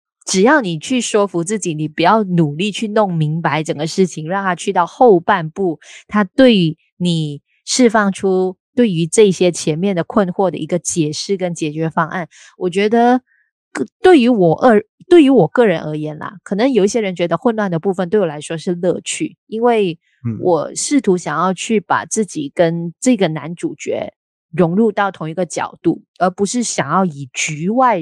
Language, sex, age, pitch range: Chinese, female, 20-39, 165-220 Hz